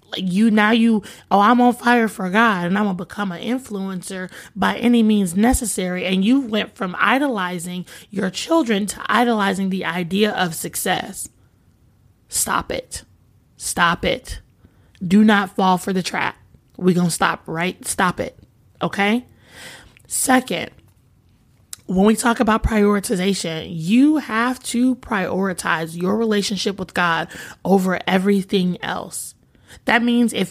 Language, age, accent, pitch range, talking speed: English, 20-39, American, 180-225 Hz, 140 wpm